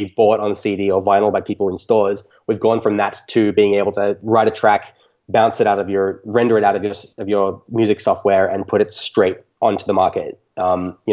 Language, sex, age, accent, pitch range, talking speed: English, male, 20-39, Australian, 100-115 Hz, 230 wpm